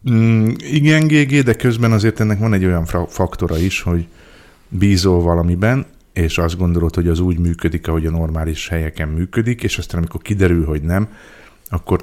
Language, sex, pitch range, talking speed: Hungarian, male, 85-95 Hz, 170 wpm